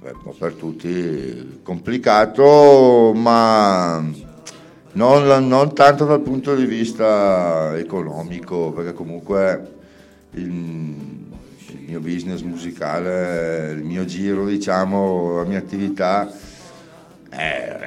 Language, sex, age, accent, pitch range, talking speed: Italian, male, 60-79, native, 85-110 Hz, 95 wpm